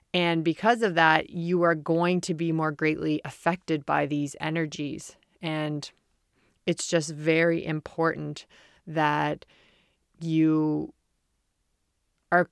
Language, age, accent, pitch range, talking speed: English, 30-49, American, 155-175 Hz, 110 wpm